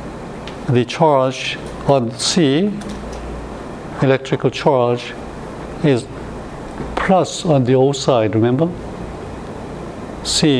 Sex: male